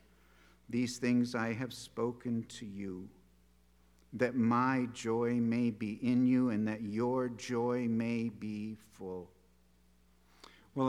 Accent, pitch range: American, 115-135 Hz